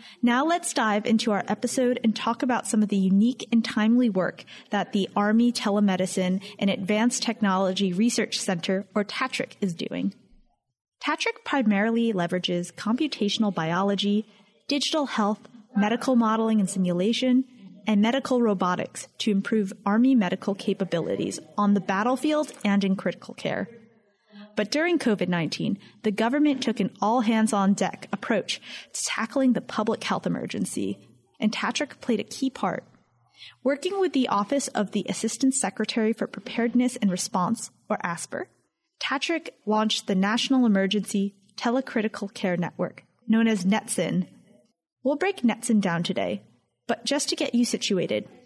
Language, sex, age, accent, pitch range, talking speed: English, female, 20-39, American, 200-245 Hz, 140 wpm